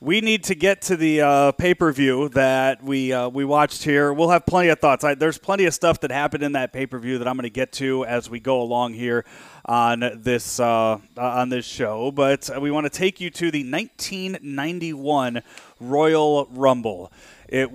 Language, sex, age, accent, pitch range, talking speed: English, male, 30-49, American, 130-165 Hz, 210 wpm